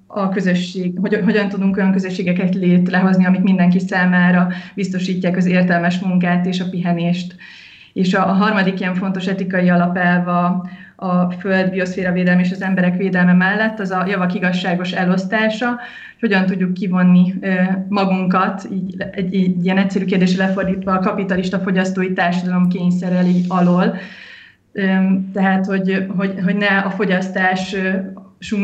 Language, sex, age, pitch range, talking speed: Hungarian, female, 20-39, 180-195 Hz, 145 wpm